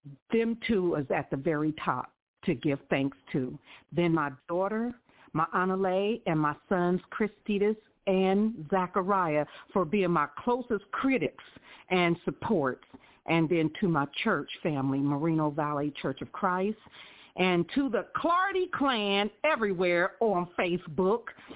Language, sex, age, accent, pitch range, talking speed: English, female, 50-69, American, 150-205 Hz, 135 wpm